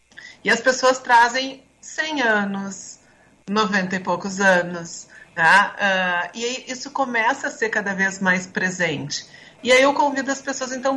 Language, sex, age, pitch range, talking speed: Portuguese, female, 40-59, 180-225 Hz, 155 wpm